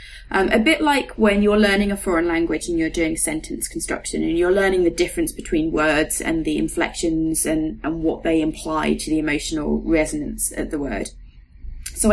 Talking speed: 190 wpm